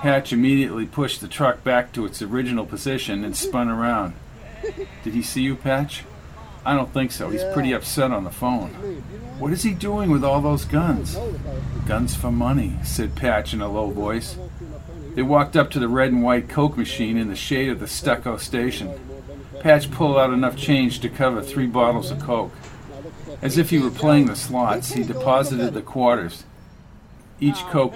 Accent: American